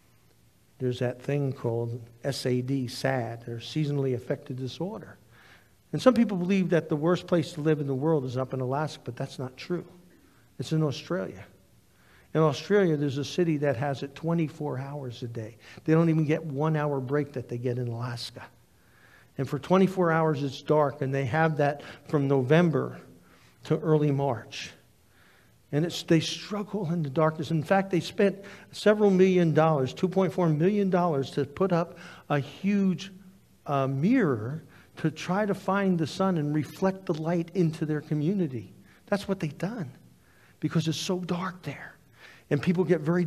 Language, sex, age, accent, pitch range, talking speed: English, male, 50-69, American, 135-180 Hz, 170 wpm